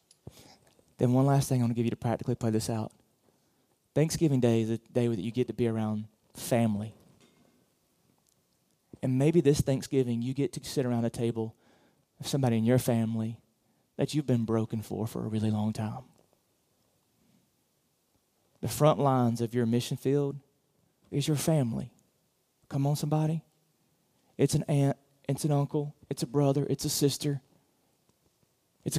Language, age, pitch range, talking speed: English, 30-49, 120-145 Hz, 160 wpm